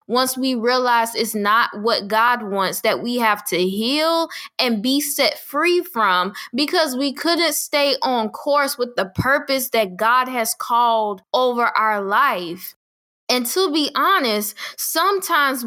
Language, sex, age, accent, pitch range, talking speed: English, female, 10-29, American, 215-285 Hz, 150 wpm